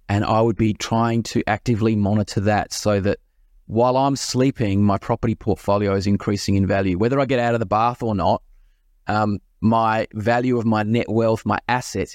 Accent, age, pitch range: Australian, 20-39, 105-125 Hz